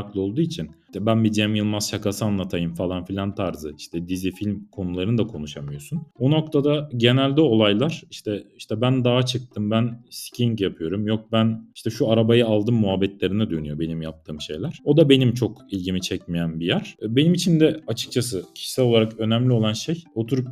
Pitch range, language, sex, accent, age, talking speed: 95-130 Hz, Turkish, male, native, 40-59, 175 wpm